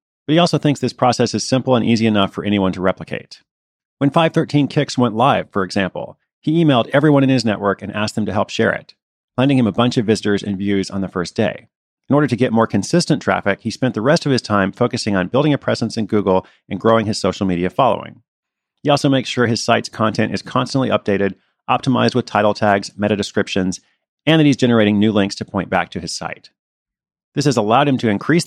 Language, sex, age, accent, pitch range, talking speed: English, male, 40-59, American, 100-130 Hz, 230 wpm